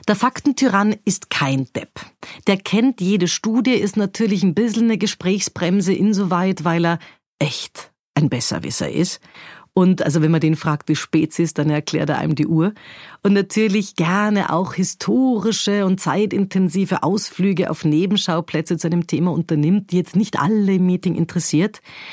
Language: German